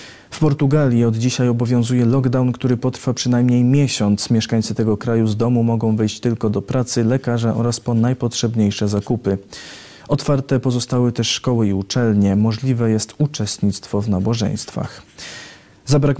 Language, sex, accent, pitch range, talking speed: Polish, male, native, 110-130 Hz, 135 wpm